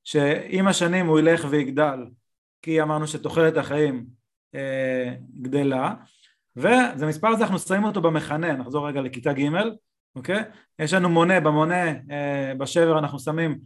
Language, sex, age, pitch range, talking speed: Hebrew, male, 20-39, 145-190 Hz, 135 wpm